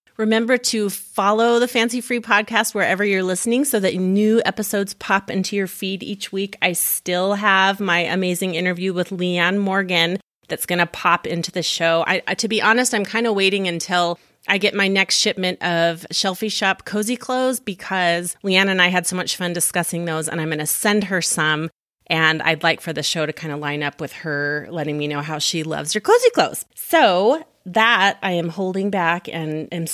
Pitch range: 170-215 Hz